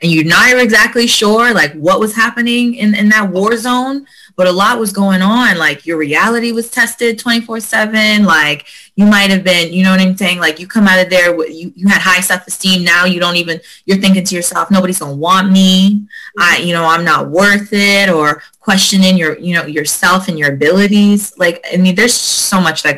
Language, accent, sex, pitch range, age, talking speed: English, American, female, 155-200 Hz, 20-39, 215 wpm